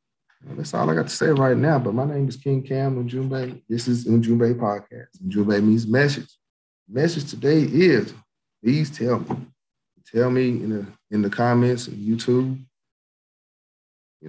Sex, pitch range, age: male, 105-130 Hz, 40-59